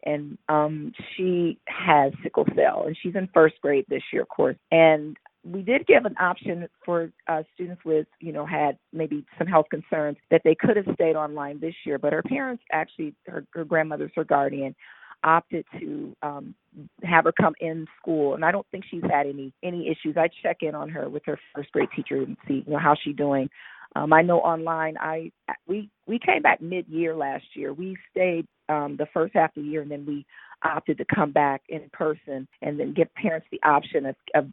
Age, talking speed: 40-59, 210 wpm